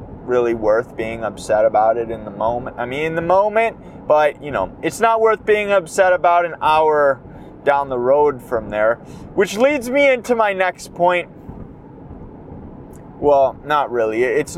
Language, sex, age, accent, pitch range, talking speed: English, male, 20-39, American, 135-200 Hz, 170 wpm